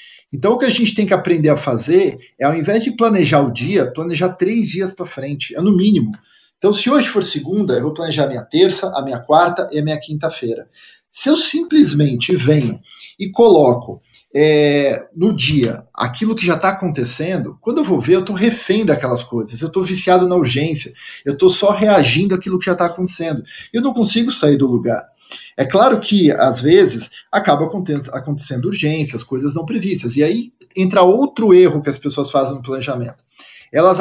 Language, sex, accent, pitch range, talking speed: Portuguese, male, Brazilian, 145-200 Hz, 190 wpm